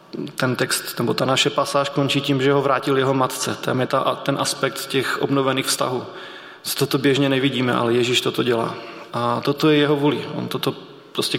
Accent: native